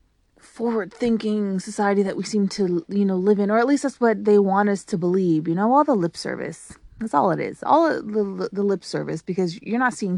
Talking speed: 230 wpm